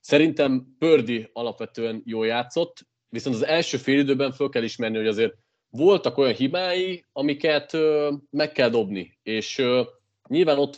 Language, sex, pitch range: Hungarian, male, 110-140 Hz